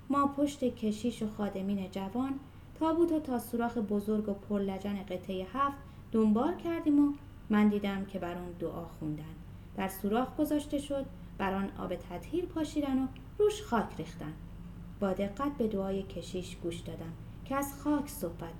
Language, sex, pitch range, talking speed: Persian, female, 195-305 Hz, 160 wpm